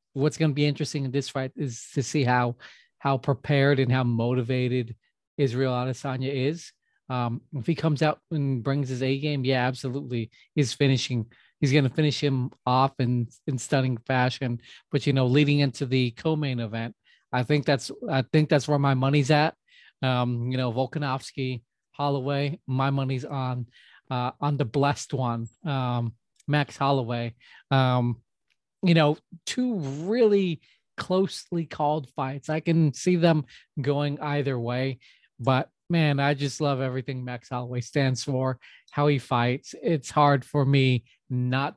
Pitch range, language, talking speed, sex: 125-150 Hz, English, 160 wpm, male